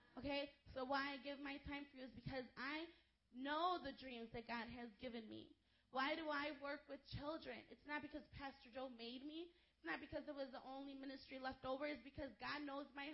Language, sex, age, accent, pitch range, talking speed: English, female, 20-39, American, 250-280 Hz, 220 wpm